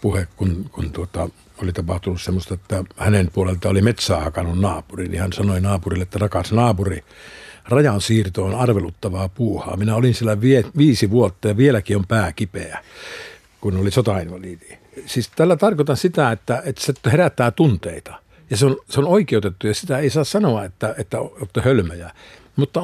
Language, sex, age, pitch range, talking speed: Finnish, male, 60-79, 100-130 Hz, 165 wpm